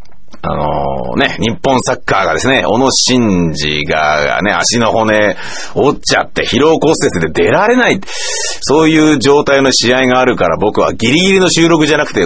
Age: 40-59